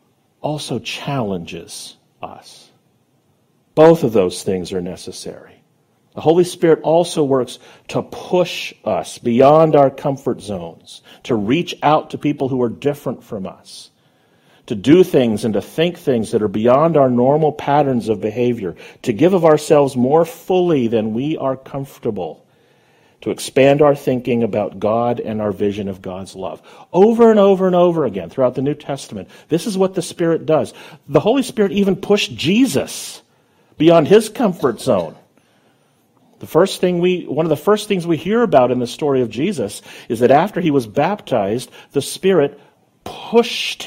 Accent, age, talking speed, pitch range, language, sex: American, 50-69, 165 wpm, 125-180 Hz, English, male